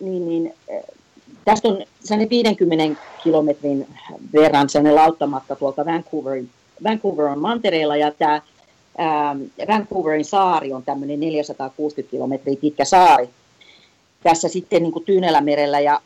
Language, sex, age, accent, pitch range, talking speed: Finnish, female, 40-59, native, 155-215 Hz, 100 wpm